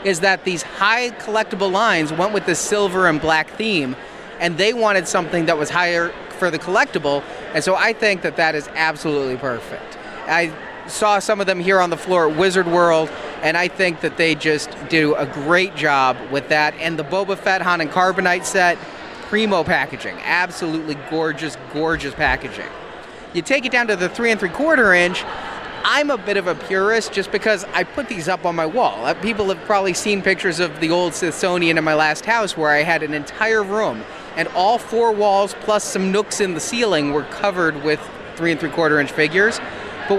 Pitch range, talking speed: 160-210 Hz, 200 wpm